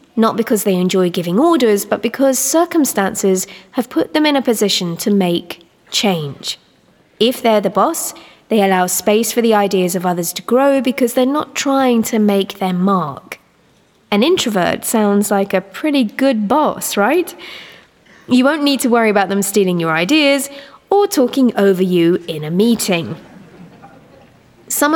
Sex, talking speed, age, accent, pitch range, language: female, 160 wpm, 20-39, British, 190-255 Hz, English